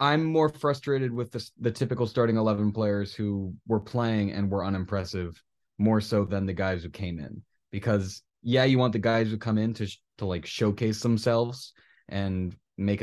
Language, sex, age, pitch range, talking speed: English, male, 20-39, 95-115 Hz, 185 wpm